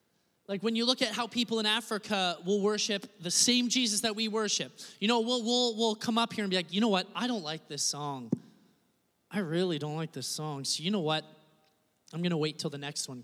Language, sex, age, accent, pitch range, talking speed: English, male, 20-39, American, 170-225 Hz, 240 wpm